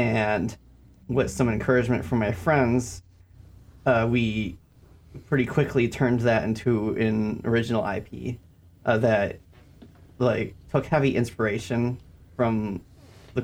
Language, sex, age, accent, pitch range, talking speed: English, male, 30-49, American, 105-120 Hz, 110 wpm